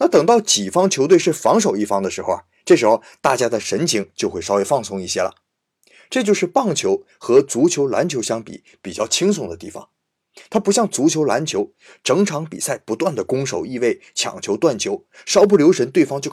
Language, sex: Chinese, male